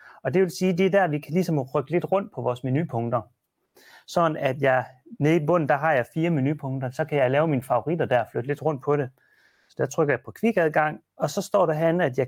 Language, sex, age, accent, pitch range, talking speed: Danish, male, 30-49, native, 130-170 Hz, 265 wpm